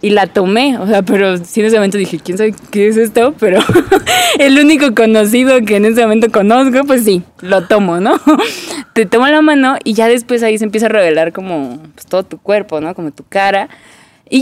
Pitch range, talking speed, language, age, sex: 185-260 Hz, 210 wpm, Spanish, 20-39, female